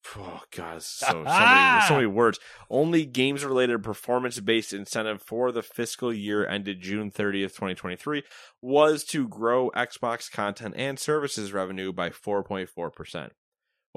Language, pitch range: English, 90-115 Hz